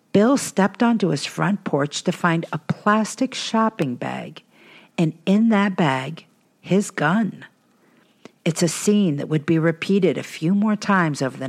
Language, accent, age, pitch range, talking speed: English, American, 50-69, 150-210 Hz, 160 wpm